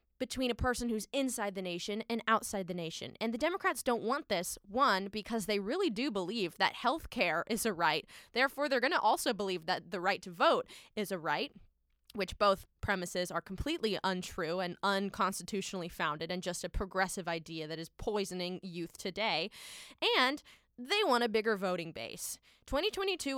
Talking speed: 180 wpm